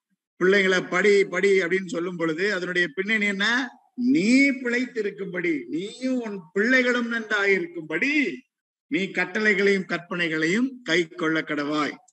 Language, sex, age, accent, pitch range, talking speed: Tamil, male, 50-69, native, 155-210 Hz, 115 wpm